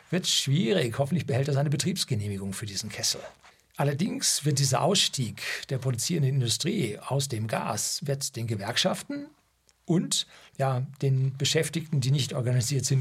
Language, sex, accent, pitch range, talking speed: German, male, German, 120-155 Hz, 145 wpm